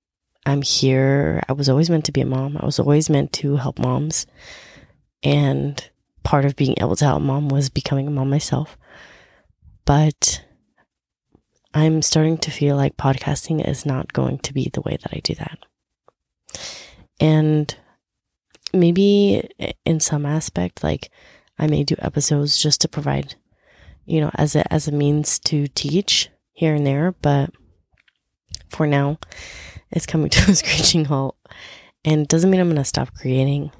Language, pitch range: English, 135-155 Hz